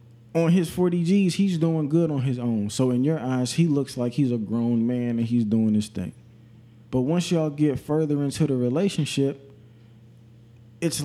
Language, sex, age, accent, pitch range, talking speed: English, male, 20-39, American, 120-165 Hz, 190 wpm